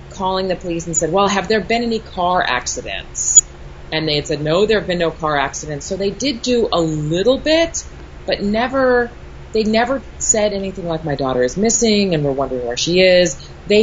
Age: 30-49